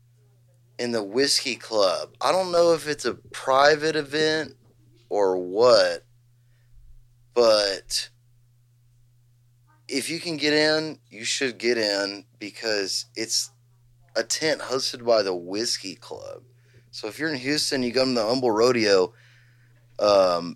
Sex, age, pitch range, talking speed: male, 20-39, 120-125 Hz, 130 wpm